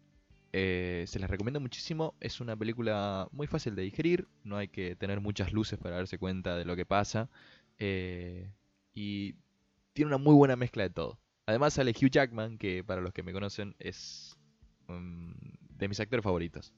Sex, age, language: male, 20-39, Spanish